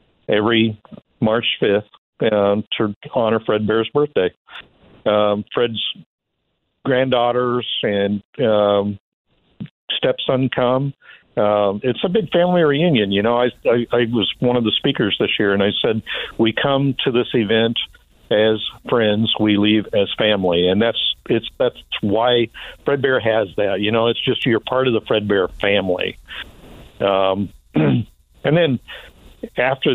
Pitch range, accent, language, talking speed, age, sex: 100-120 Hz, American, English, 145 wpm, 50-69, male